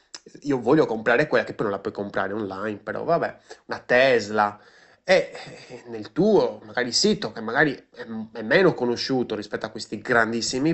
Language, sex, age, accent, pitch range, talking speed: Italian, male, 20-39, native, 115-165 Hz, 160 wpm